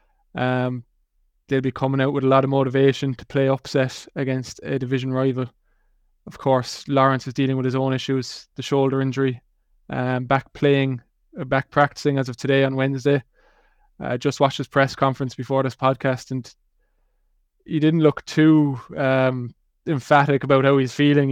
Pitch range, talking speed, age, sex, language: 130-140 Hz, 170 wpm, 20-39, male, English